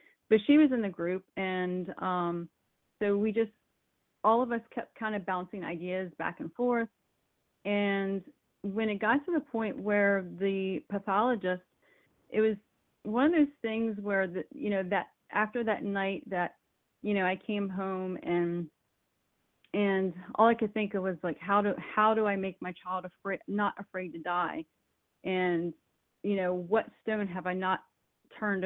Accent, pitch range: American, 180-220 Hz